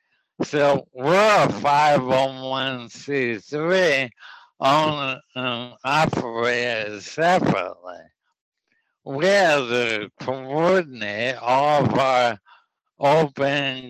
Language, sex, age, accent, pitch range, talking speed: English, male, 60-79, American, 120-150 Hz, 70 wpm